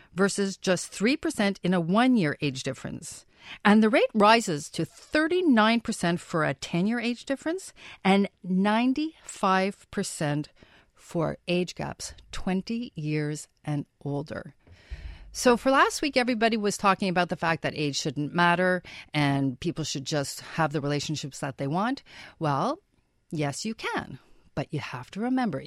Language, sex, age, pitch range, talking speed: English, female, 50-69, 155-230 Hz, 145 wpm